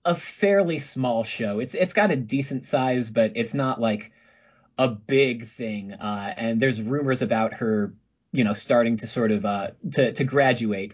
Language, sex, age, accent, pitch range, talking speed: English, male, 30-49, American, 105-130 Hz, 180 wpm